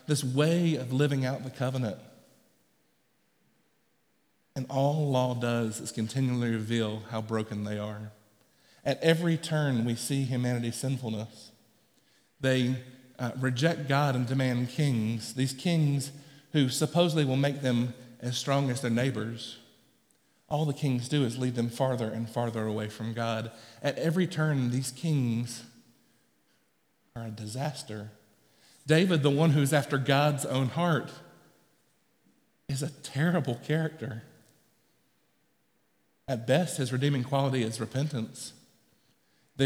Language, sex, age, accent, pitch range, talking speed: English, male, 50-69, American, 120-150 Hz, 130 wpm